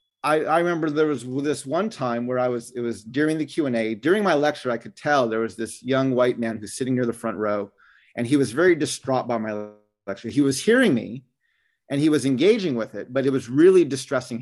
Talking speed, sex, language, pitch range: 235 wpm, male, English, 115-155 Hz